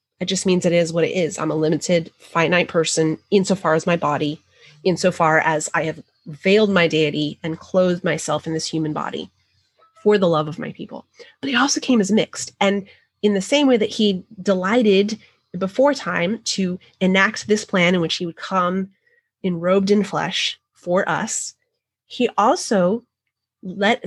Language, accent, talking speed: English, American, 175 wpm